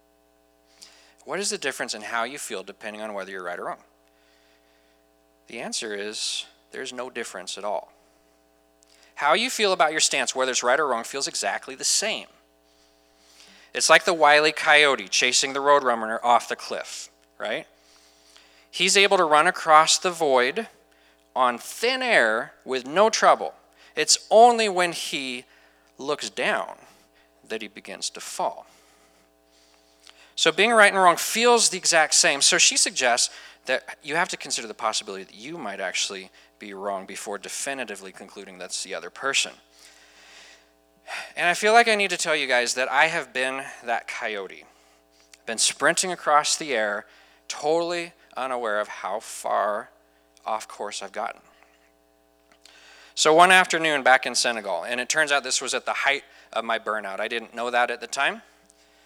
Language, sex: English, male